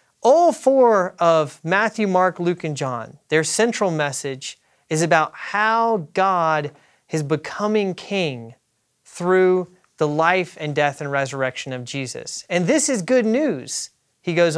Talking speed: 140 wpm